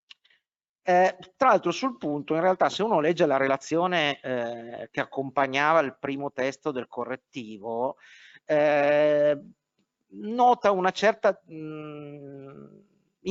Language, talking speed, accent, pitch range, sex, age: Italian, 115 wpm, native, 145-225 Hz, male, 50-69